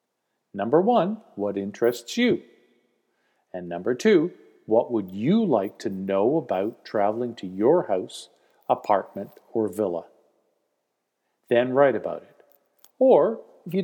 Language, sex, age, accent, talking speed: English, male, 50-69, American, 125 wpm